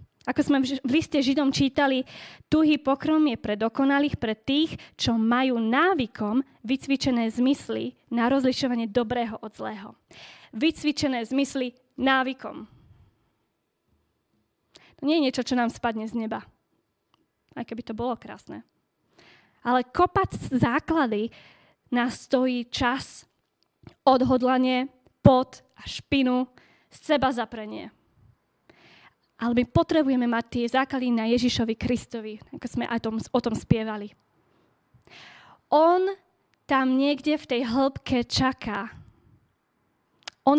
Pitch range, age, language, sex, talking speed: 235-275 Hz, 20-39, Slovak, female, 115 wpm